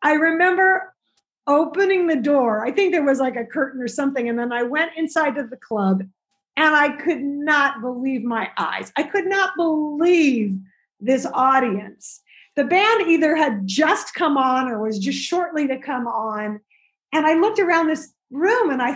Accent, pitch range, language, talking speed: American, 225-335 Hz, English, 180 wpm